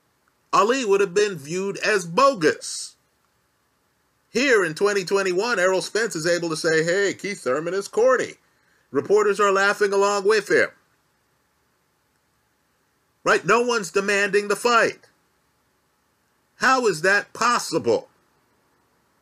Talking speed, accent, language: 115 wpm, American, English